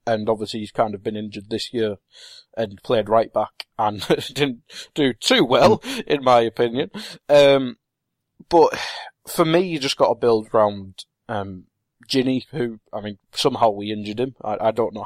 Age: 20-39